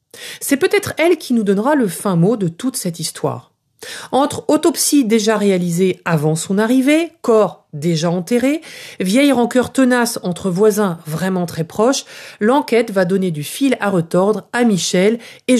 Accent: French